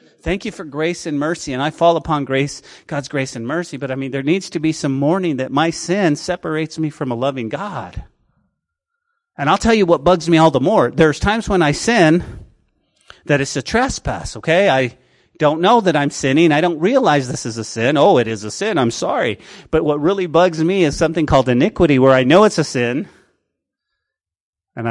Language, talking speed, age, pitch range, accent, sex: English, 215 wpm, 30-49, 130-180 Hz, American, male